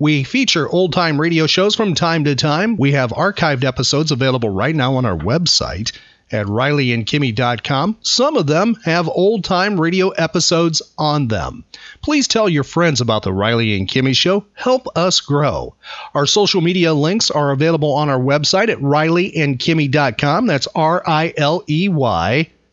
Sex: male